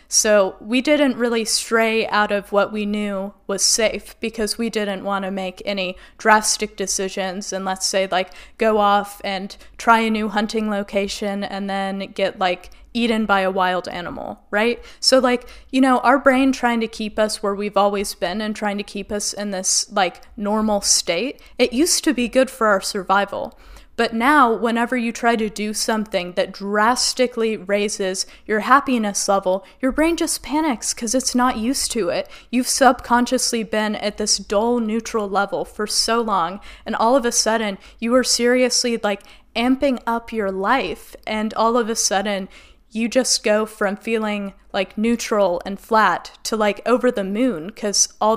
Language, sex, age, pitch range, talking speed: English, female, 20-39, 200-235 Hz, 180 wpm